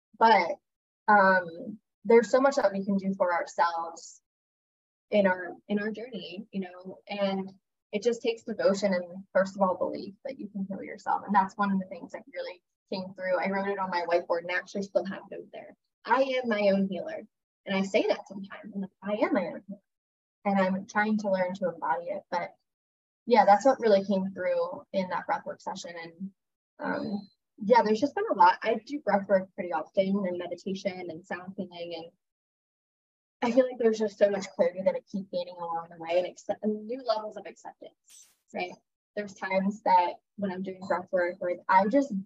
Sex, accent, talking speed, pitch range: female, American, 205 wpm, 190-225 Hz